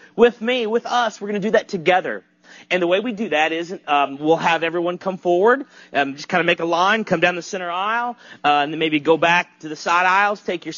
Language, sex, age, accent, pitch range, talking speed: English, male, 40-59, American, 165-210 Hz, 260 wpm